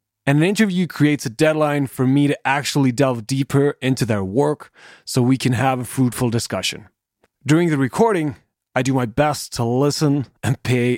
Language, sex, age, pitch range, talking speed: English, male, 20-39, 125-150 Hz, 180 wpm